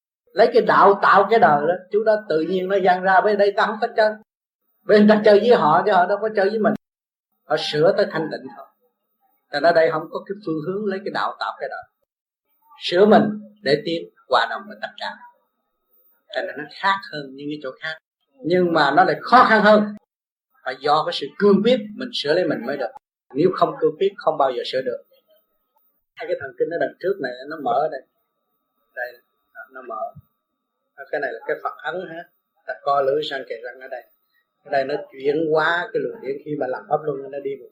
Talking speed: 225 wpm